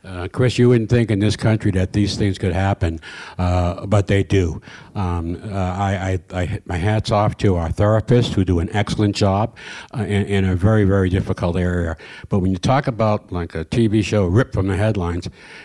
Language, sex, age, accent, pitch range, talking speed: English, male, 60-79, American, 95-120 Hz, 205 wpm